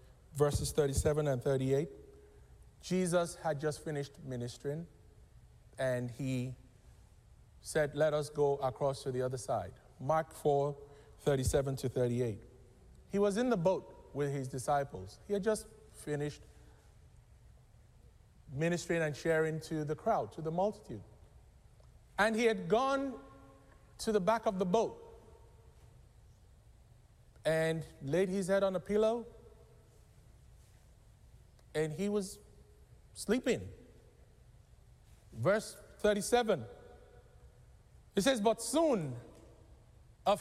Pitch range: 130-205 Hz